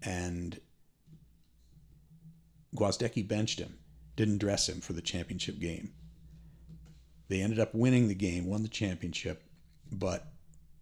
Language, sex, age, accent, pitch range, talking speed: English, male, 50-69, American, 90-110 Hz, 115 wpm